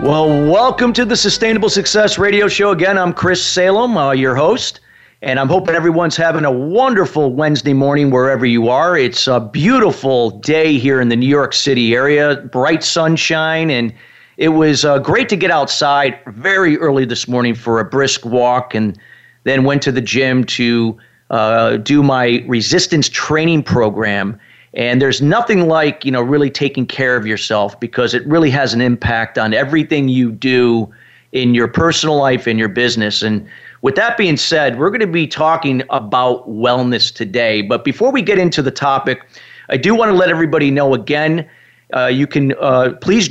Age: 40-59